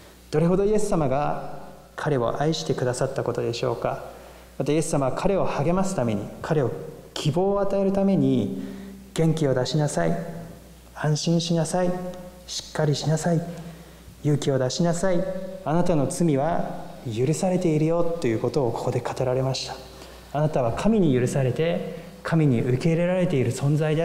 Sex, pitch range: male, 130-180 Hz